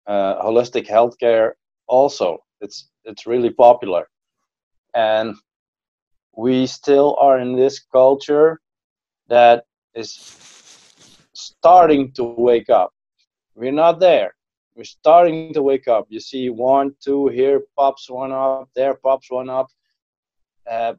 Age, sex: 30-49, male